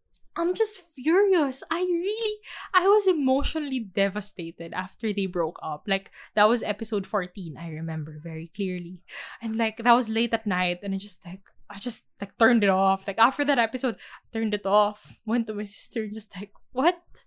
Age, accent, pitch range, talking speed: 20-39, Filipino, 210-315 Hz, 190 wpm